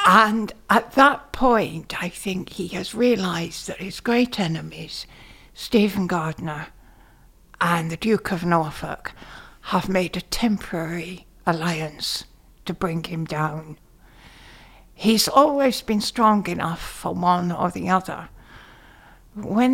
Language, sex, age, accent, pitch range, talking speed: Dutch, female, 60-79, British, 165-225 Hz, 120 wpm